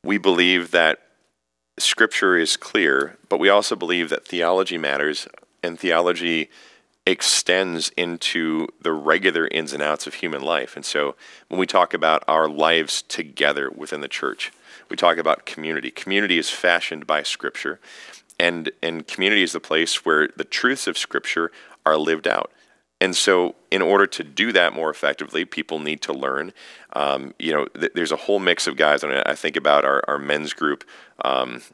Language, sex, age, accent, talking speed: English, male, 40-59, American, 170 wpm